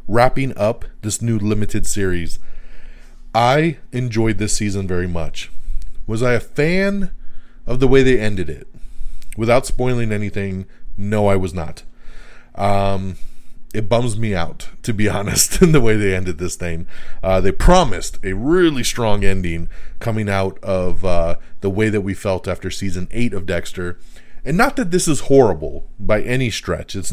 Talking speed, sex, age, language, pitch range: 165 wpm, male, 30-49, English, 90-120 Hz